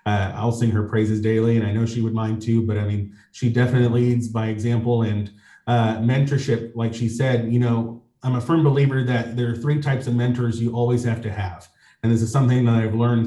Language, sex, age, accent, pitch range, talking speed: English, male, 30-49, American, 115-125 Hz, 235 wpm